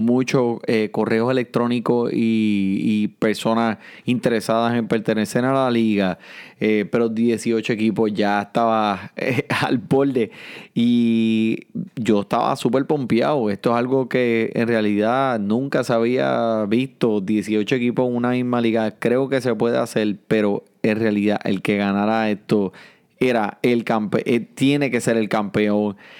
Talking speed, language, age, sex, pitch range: 140 wpm, Spanish, 30-49, male, 110-130 Hz